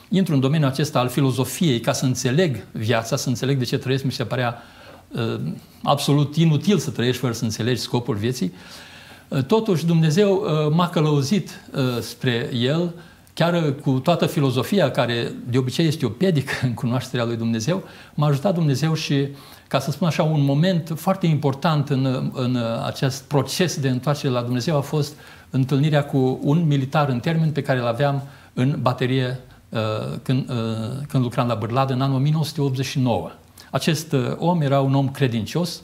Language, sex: Romanian, male